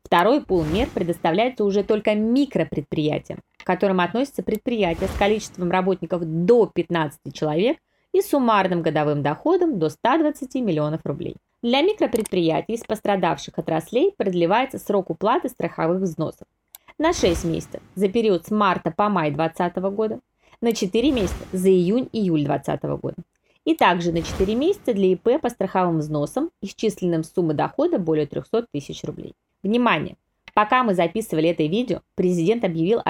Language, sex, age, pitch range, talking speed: Russian, female, 20-39, 165-225 Hz, 145 wpm